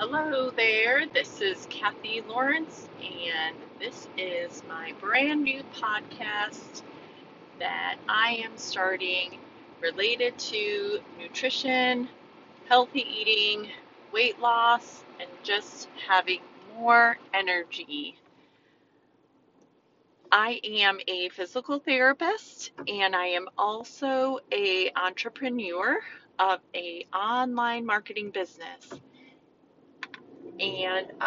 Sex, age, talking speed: female, 30-49, 90 wpm